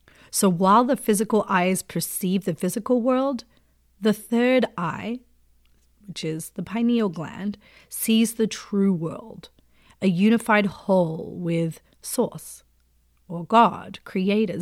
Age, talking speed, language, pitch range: 30-49, 120 wpm, English, 185-230 Hz